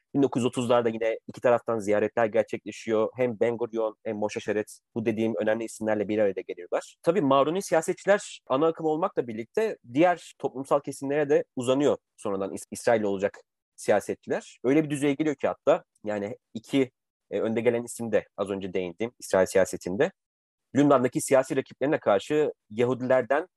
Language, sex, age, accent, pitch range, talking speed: Turkish, male, 30-49, native, 115-155 Hz, 150 wpm